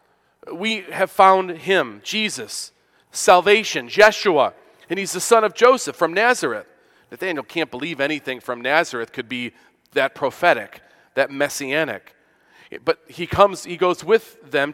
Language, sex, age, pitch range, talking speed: English, male, 40-59, 145-205 Hz, 140 wpm